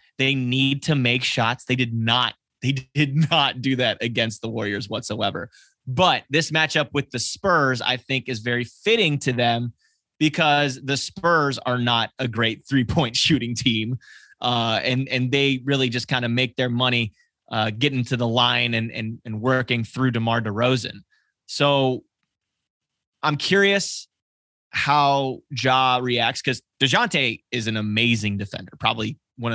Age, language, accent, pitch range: 20-39, English, American, 115-140 Hz